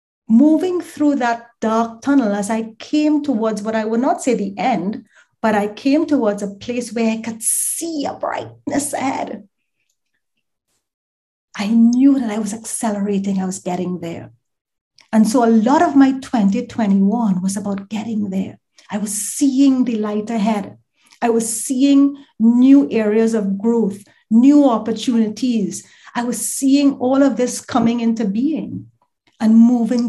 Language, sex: English, female